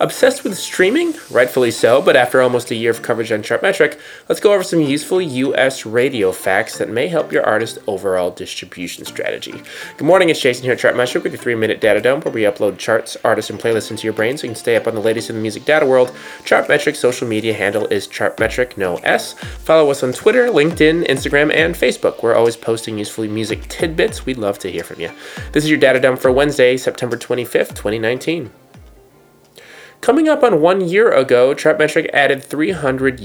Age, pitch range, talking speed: 20-39, 110-155 Hz, 200 wpm